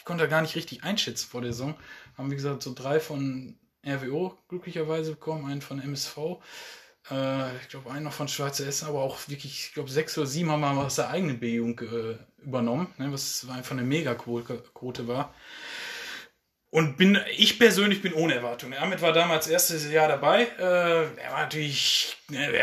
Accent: German